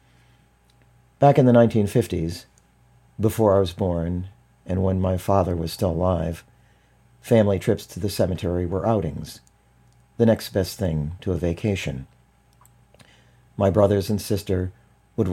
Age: 40-59